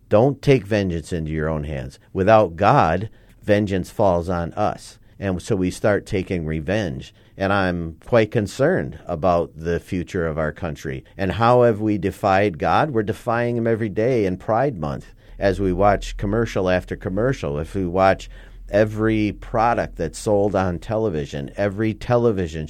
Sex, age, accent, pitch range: male, 40-59, American, 90-110 Hz